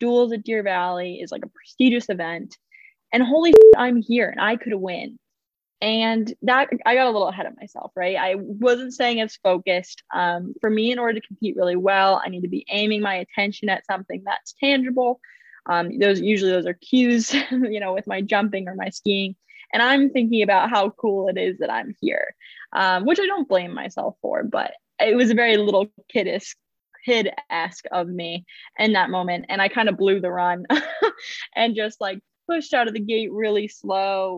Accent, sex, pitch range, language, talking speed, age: American, female, 185-240 Hz, English, 200 wpm, 10-29